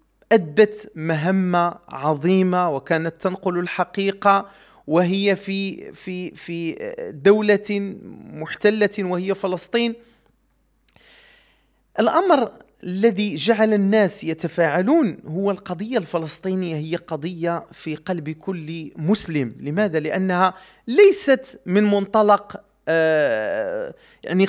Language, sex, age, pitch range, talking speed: Arabic, male, 40-59, 170-245 Hz, 85 wpm